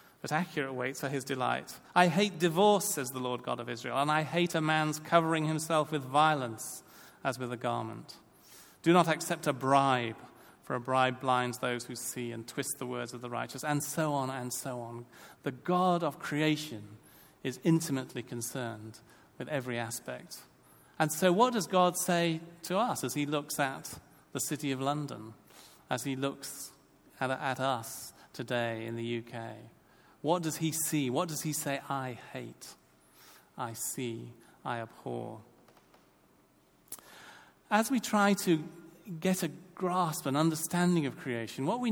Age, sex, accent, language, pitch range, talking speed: 40-59, male, British, English, 125-175 Hz, 165 wpm